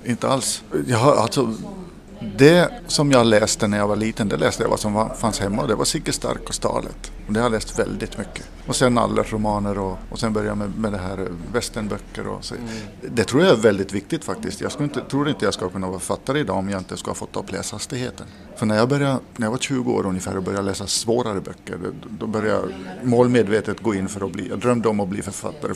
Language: Swedish